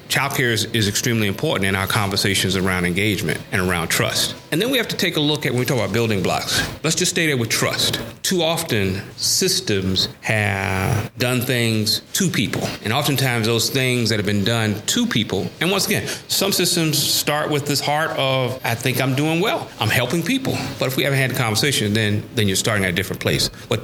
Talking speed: 215 wpm